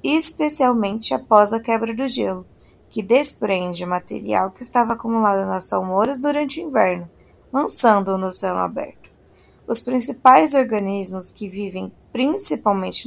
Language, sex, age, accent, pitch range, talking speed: Portuguese, female, 20-39, Brazilian, 195-245 Hz, 125 wpm